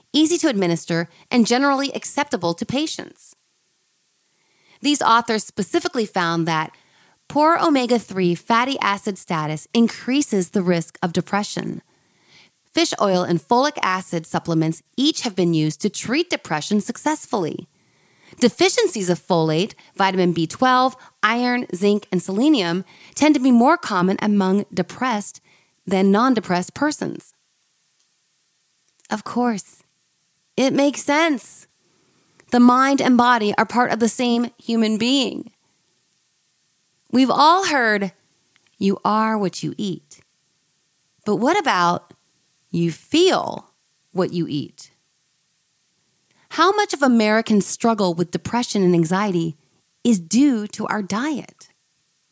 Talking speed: 115 wpm